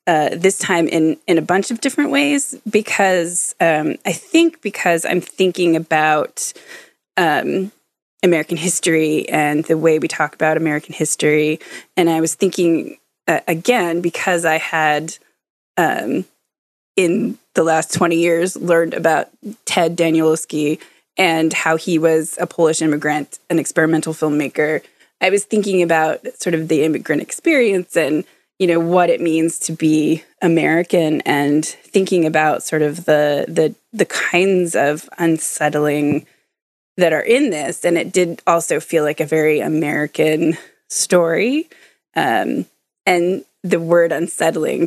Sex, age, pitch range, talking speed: female, 20-39, 160-190 Hz, 140 wpm